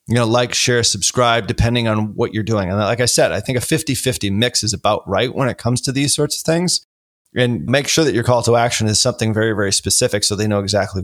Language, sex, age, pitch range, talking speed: English, male, 30-49, 105-130 Hz, 255 wpm